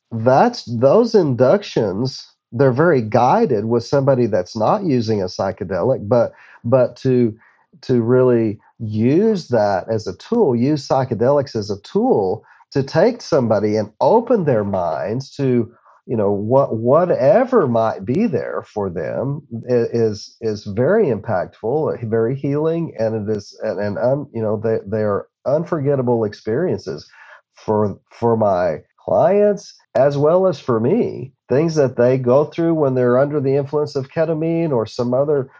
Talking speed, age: 145 wpm, 40-59